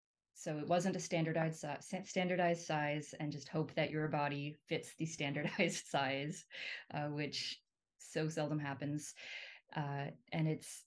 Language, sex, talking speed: English, female, 145 wpm